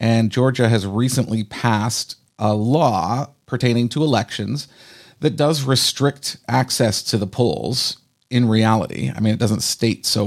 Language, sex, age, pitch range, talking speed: English, male, 40-59, 115-145 Hz, 145 wpm